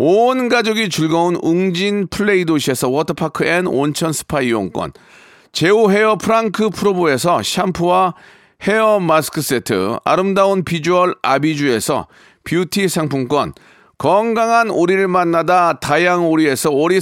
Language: Korean